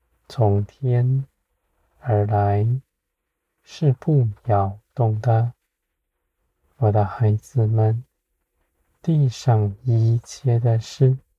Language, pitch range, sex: Chinese, 95-125 Hz, male